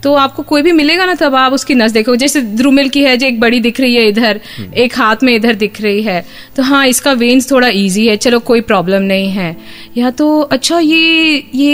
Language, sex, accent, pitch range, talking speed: Hindi, female, native, 225-300 Hz, 235 wpm